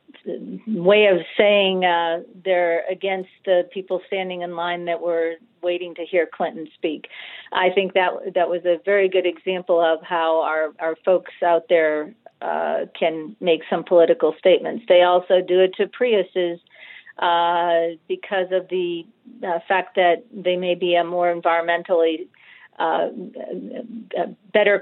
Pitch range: 170-200 Hz